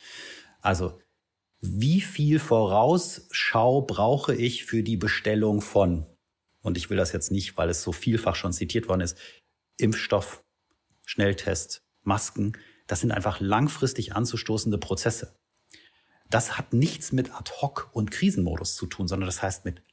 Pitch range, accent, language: 95-125 Hz, German, German